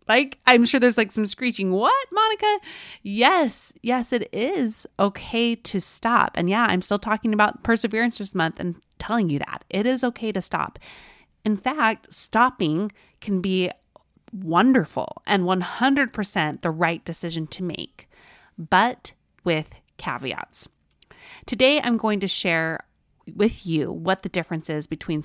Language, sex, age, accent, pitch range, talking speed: English, female, 30-49, American, 165-220 Hz, 145 wpm